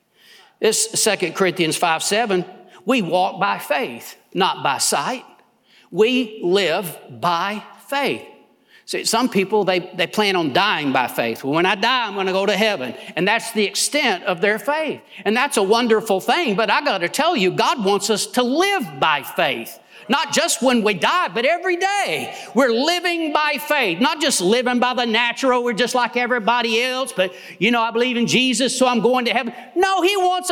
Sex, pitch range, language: male, 190-260 Hz, English